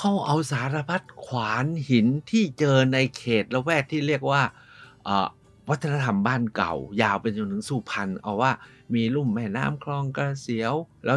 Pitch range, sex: 120-155 Hz, male